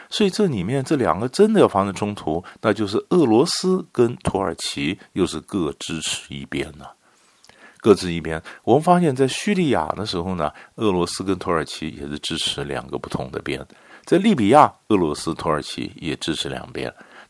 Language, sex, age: Chinese, male, 50-69